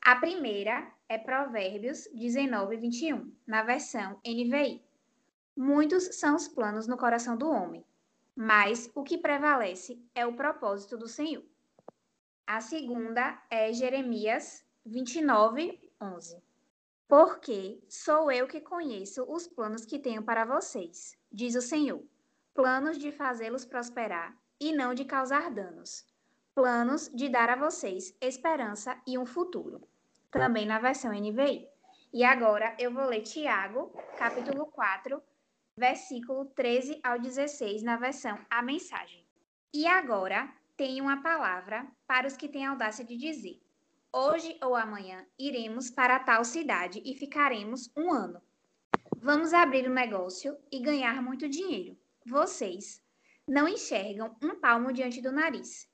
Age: 20-39